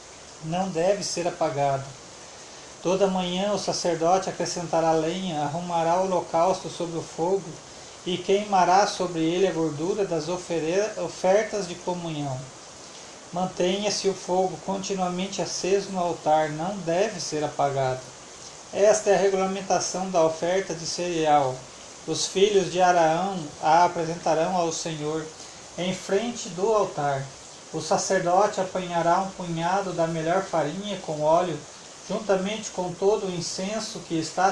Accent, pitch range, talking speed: Brazilian, 160-190 Hz, 130 wpm